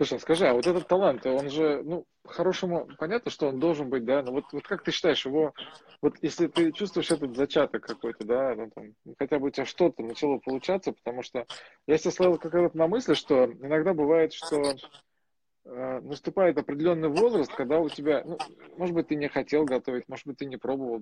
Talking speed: 205 wpm